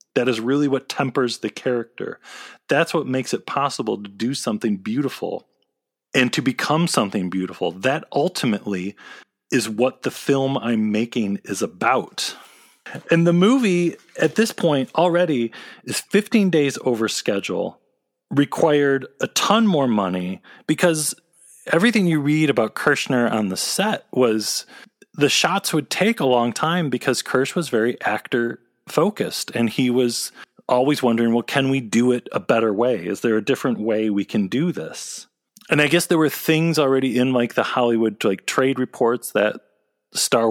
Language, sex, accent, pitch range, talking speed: English, male, American, 120-160 Hz, 160 wpm